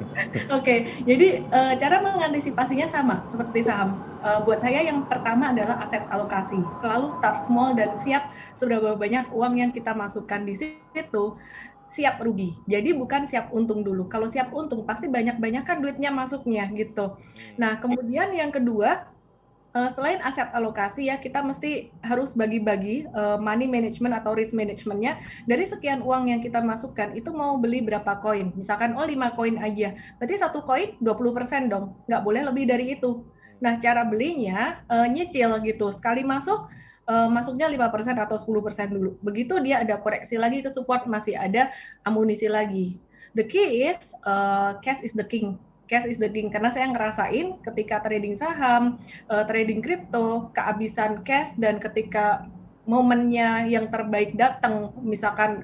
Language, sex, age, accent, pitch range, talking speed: Indonesian, female, 20-39, native, 210-255 Hz, 155 wpm